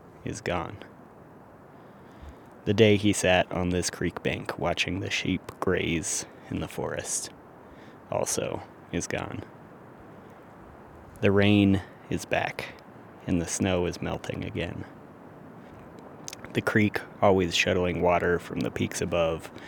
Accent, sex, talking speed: American, male, 120 wpm